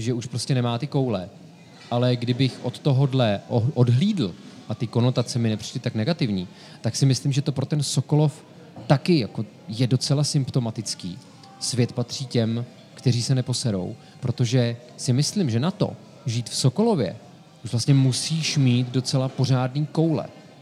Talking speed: 155 wpm